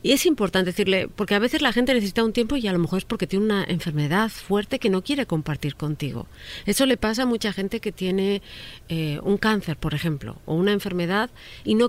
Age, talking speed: 40-59, 225 wpm